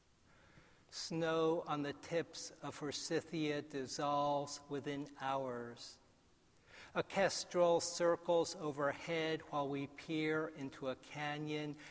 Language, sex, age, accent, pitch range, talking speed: English, male, 60-79, American, 140-160 Hz, 95 wpm